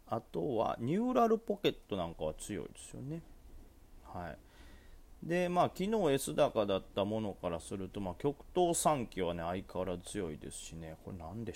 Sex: male